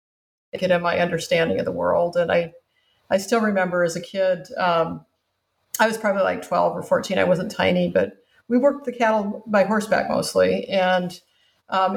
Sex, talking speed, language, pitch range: female, 180 wpm, English, 185-210 Hz